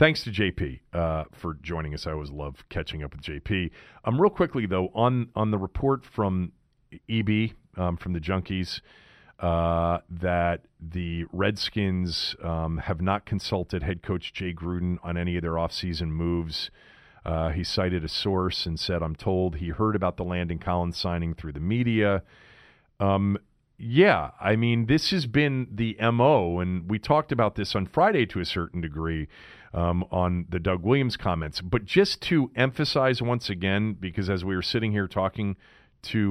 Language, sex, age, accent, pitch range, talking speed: English, male, 40-59, American, 85-110 Hz, 175 wpm